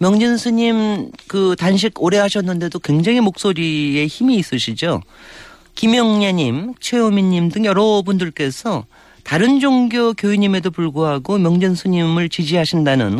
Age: 40-59